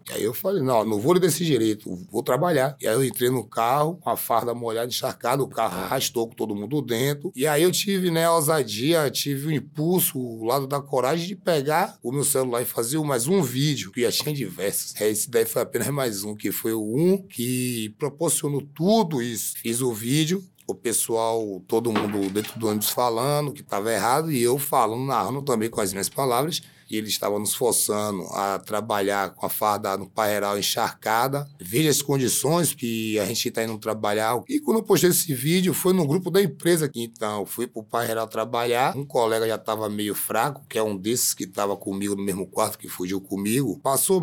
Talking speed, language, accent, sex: 215 wpm, Portuguese, Brazilian, male